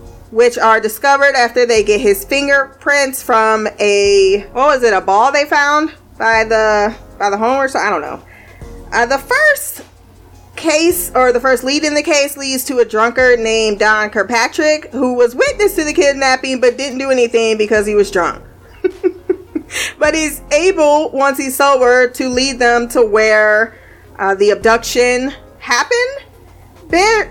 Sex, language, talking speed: female, English, 165 wpm